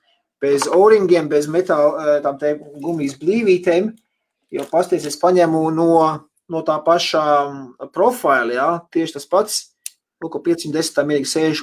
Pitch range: 145-195 Hz